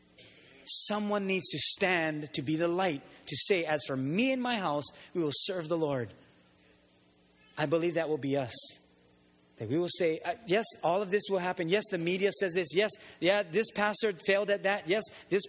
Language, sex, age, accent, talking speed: English, male, 30-49, American, 200 wpm